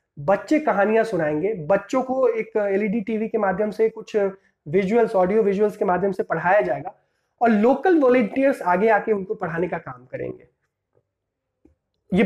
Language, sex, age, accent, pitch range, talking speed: Hindi, male, 30-49, native, 190-240 Hz, 150 wpm